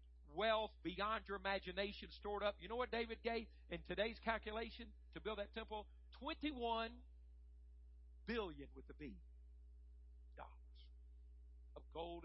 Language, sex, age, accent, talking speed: English, male, 60-79, American, 125 wpm